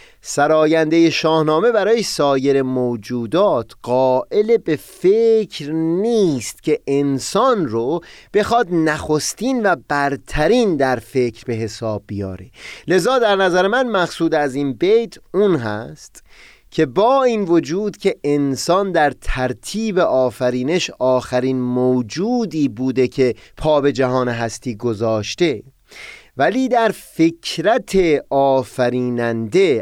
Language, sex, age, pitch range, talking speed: Persian, male, 30-49, 125-200 Hz, 105 wpm